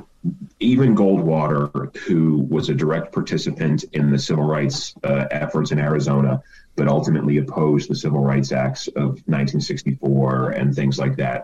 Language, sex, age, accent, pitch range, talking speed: English, male, 30-49, American, 70-80 Hz, 145 wpm